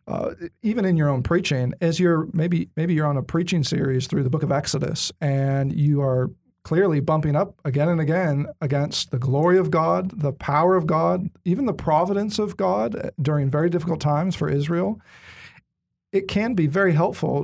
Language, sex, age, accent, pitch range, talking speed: English, male, 40-59, American, 140-180 Hz, 185 wpm